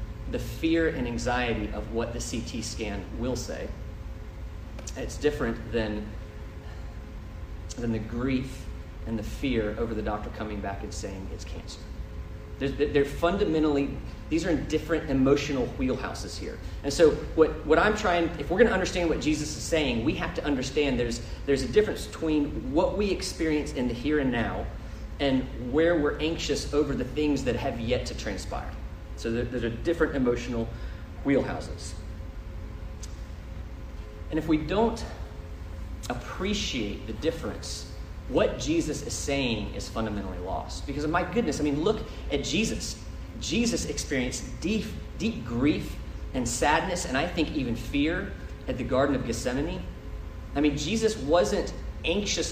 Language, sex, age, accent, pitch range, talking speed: English, male, 30-49, American, 90-145 Hz, 155 wpm